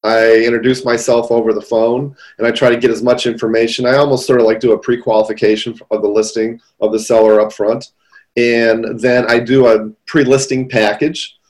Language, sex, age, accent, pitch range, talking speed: English, male, 40-59, American, 110-130 Hz, 195 wpm